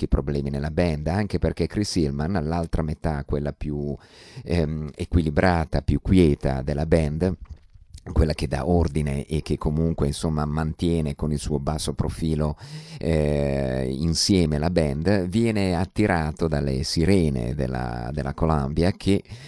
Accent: native